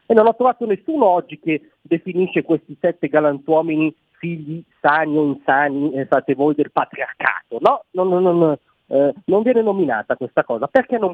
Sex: male